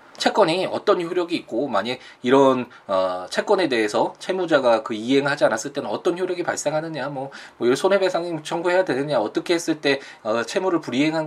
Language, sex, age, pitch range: Korean, male, 20-39, 130-205 Hz